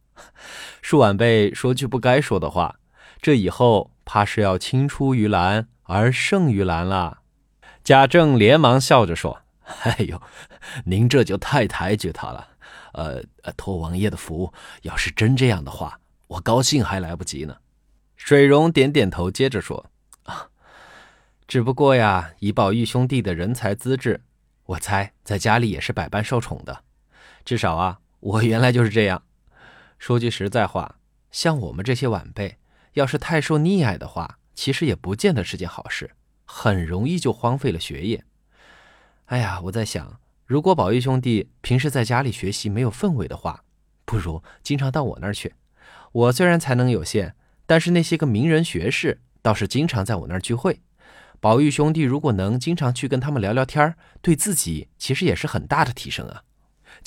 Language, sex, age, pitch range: Chinese, male, 20-39, 95-135 Hz